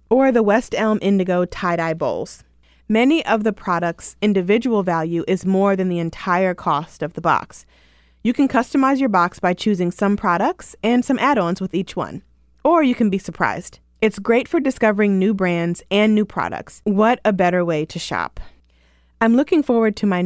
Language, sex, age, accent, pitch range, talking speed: English, female, 20-39, American, 175-225 Hz, 185 wpm